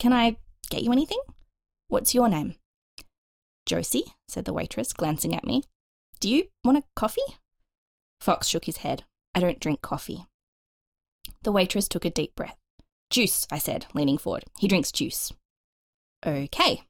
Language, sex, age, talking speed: English, female, 20-39, 155 wpm